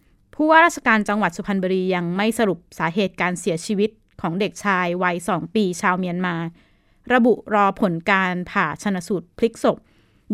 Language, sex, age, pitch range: Thai, female, 20-39, 175-215 Hz